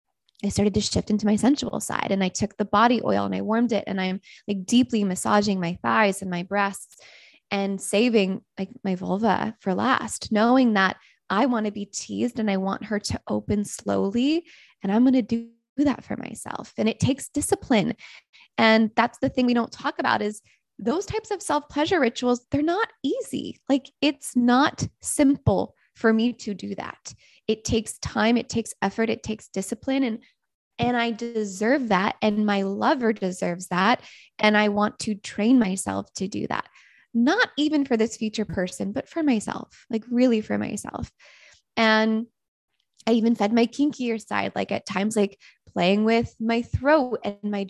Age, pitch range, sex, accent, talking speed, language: 20-39, 200-245 Hz, female, American, 180 wpm, English